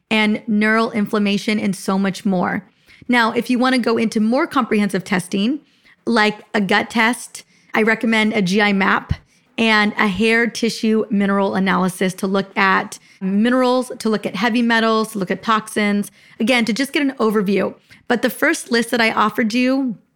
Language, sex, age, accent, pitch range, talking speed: English, female, 30-49, American, 205-235 Hz, 175 wpm